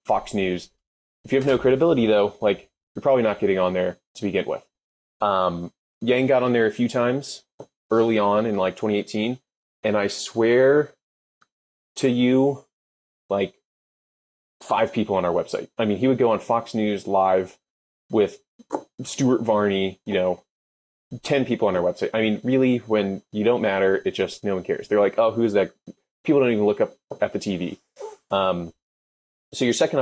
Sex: male